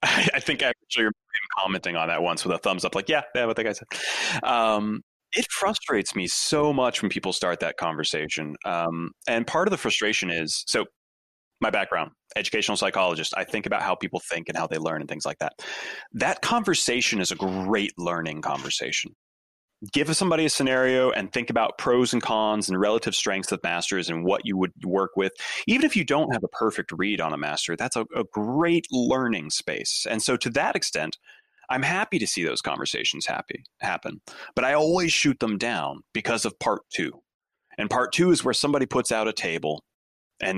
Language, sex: English, male